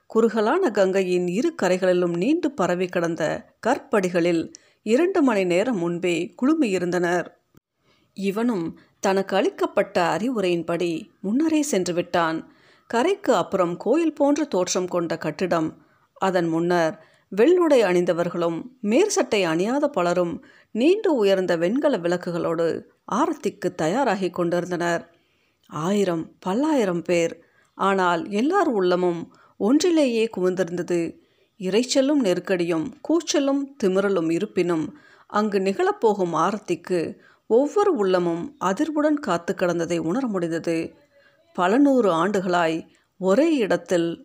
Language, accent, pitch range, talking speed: Tamil, native, 175-270 Hz, 90 wpm